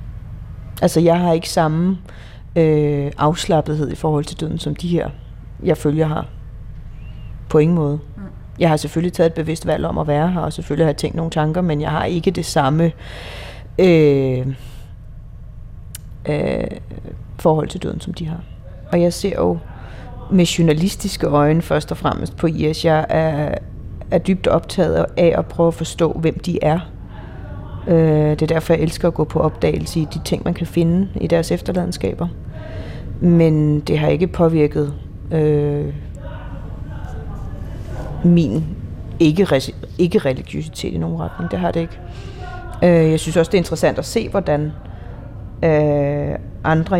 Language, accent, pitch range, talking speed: Danish, native, 110-170 Hz, 160 wpm